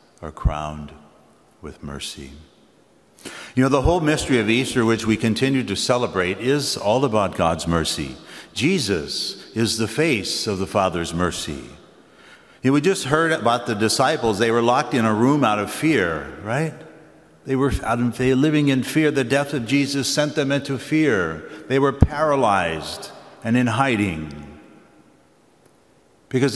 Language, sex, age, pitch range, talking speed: English, male, 60-79, 95-125 Hz, 150 wpm